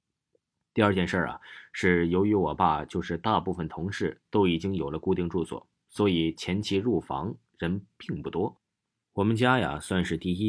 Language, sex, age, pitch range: Chinese, male, 20-39, 85-115 Hz